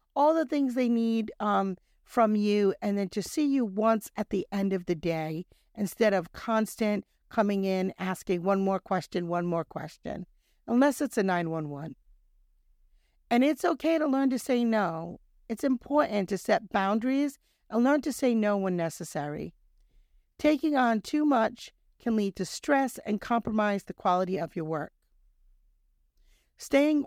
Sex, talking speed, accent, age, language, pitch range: female, 160 wpm, American, 50-69, English, 185-255 Hz